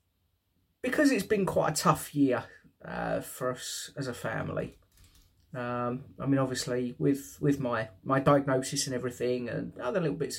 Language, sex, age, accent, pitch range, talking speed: English, male, 30-49, British, 95-145 Hz, 160 wpm